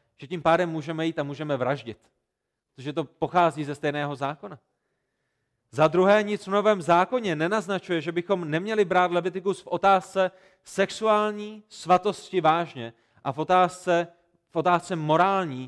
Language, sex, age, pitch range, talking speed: Czech, male, 40-59, 150-190 Hz, 140 wpm